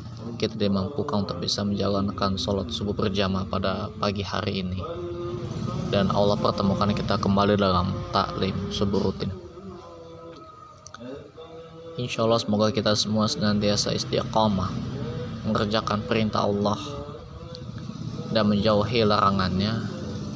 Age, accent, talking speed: 20-39, native, 105 wpm